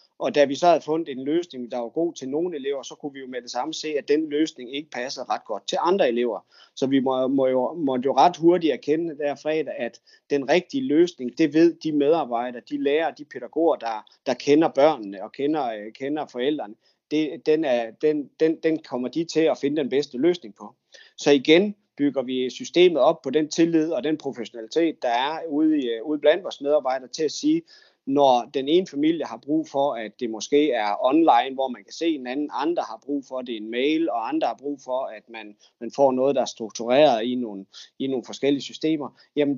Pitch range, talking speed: 120-155 Hz, 225 wpm